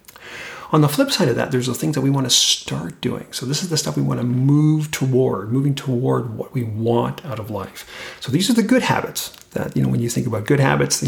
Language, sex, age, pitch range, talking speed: English, male, 40-59, 115-150 Hz, 265 wpm